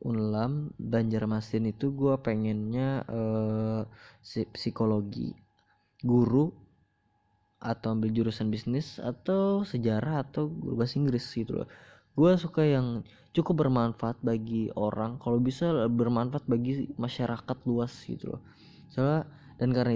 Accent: native